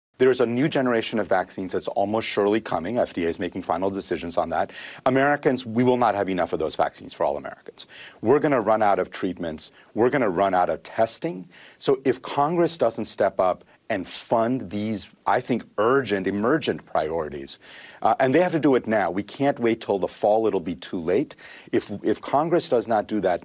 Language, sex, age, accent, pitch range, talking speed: English, male, 40-59, American, 155-205 Hz, 210 wpm